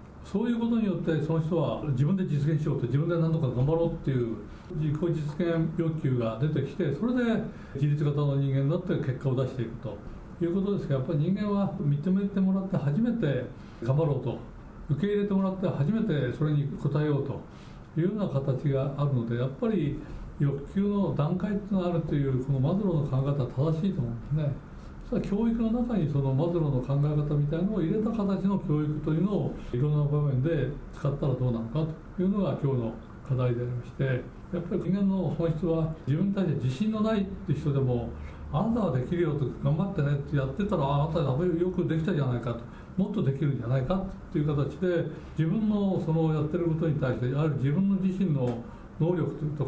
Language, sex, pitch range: Japanese, male, 135-180 Hz